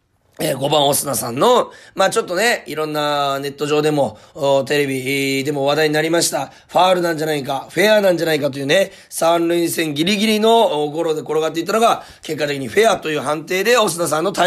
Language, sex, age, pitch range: Japanese, male, 30-49, 155-215 Hz